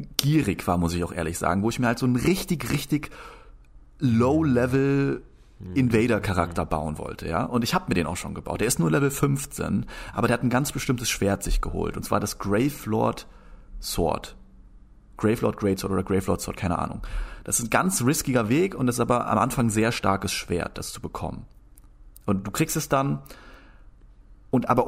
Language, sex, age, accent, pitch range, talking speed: German, male, 30-49, German, 105-135 Hz, 185 wpm